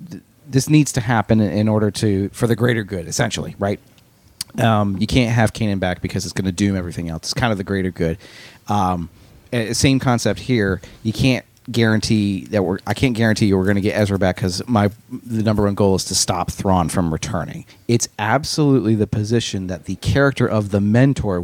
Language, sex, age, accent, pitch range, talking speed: English, male, 30-49, American, 100-120 Hz, 205 wpm